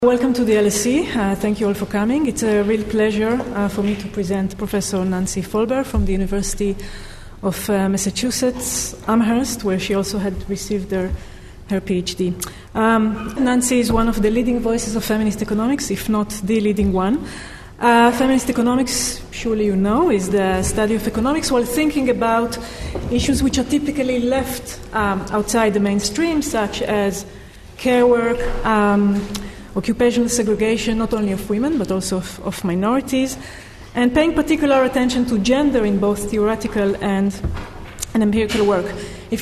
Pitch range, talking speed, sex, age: 200-245 Hz, 160 wpm, female, 30-49